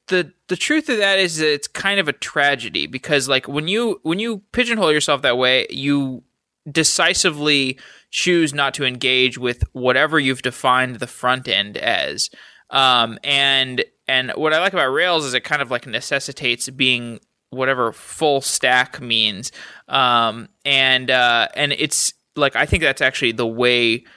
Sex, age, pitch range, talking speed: male, 20-39, 120-140 Hz, 165 wpm